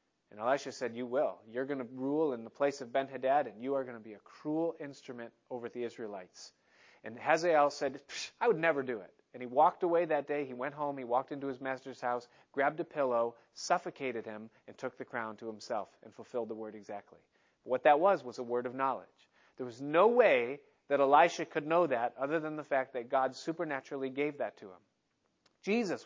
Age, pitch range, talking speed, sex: 30-49, 125-160 Hz, 215 wpm, male